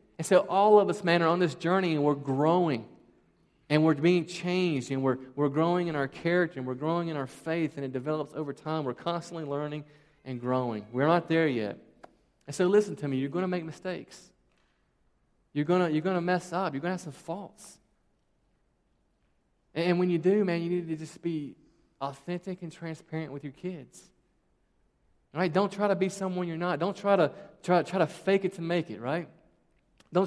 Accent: American